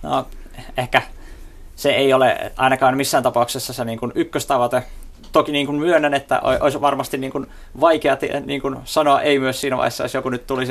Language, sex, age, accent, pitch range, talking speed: Finnish, male, 20-39, native, 115-130 Hz, 140 wpm